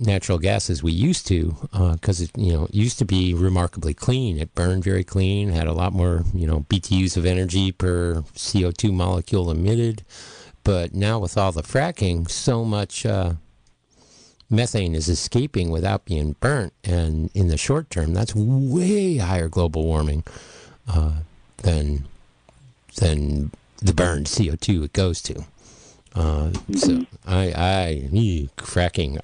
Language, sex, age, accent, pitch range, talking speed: English, male, 50-69, American, 85-110 Hz, 150 wpm